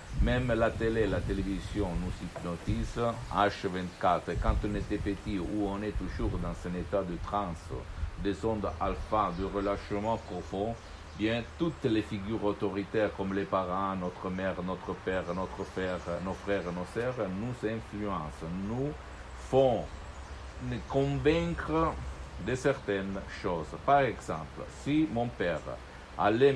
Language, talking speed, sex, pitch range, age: Italian, 140 wpm, male, 95-115 Hz, 60-79